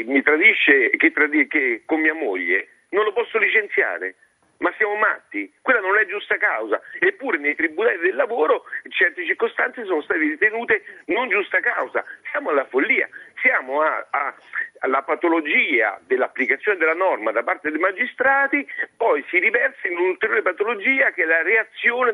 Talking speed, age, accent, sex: 155 wpm, 50-69, native, male